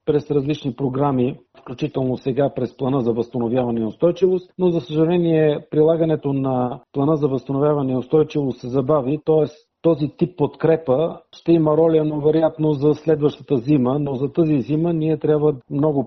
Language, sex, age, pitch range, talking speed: Bulgarian, male, 50-69, 135-165 Hz, 155 wpm